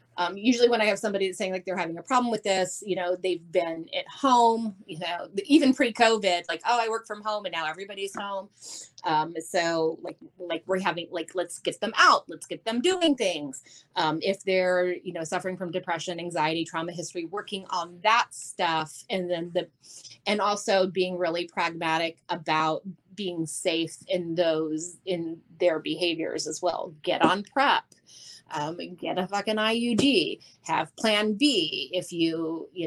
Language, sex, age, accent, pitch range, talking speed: English, female, 30-49, American, 170-220 Hz, 180 wpm